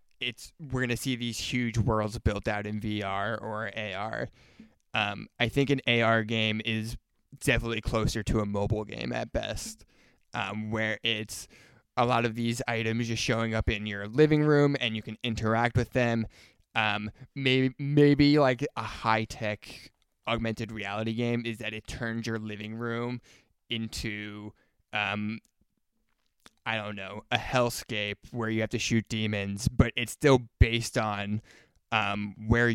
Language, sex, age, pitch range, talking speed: English, male, 20-39, 105-120 Hz, 160 wpm